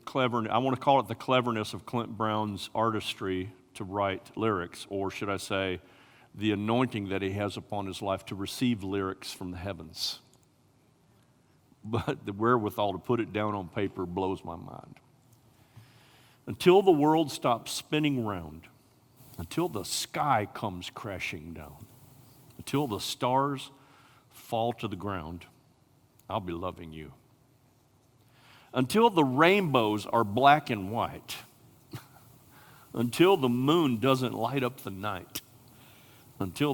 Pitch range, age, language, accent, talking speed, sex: 100-135 Hz, 50-69, English, American, 135 wpm, male